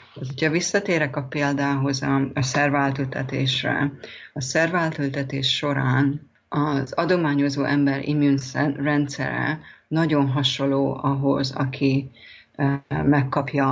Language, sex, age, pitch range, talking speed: Hungarian, female, 30-49, 135-145 Hz, 80 wpm